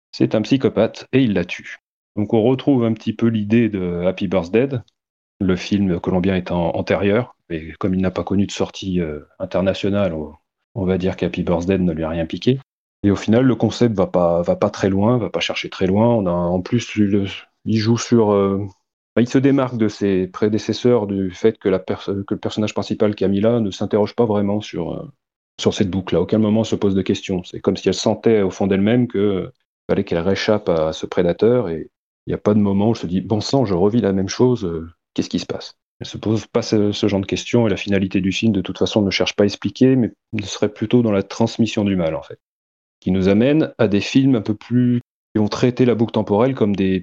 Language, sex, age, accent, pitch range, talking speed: French, male, 30-49, French, 95-115 Hz, 235 wpm